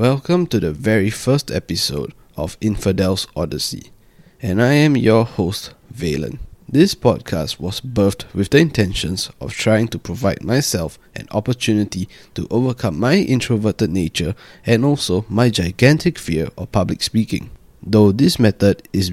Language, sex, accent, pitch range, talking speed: English, male, Malaysian, 95-130 Hz, 145 wpm